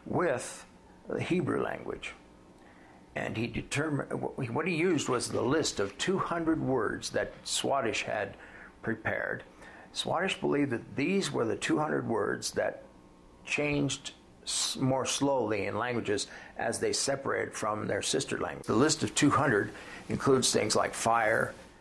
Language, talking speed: English, 145 wpm